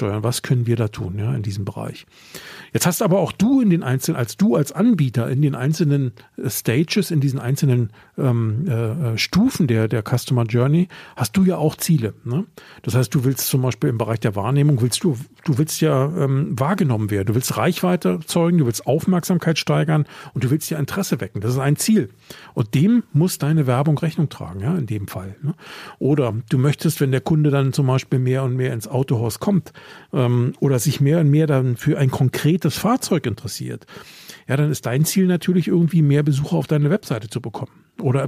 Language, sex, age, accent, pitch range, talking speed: German, male, 50-69, German, 125-165 Hz, 205 wpm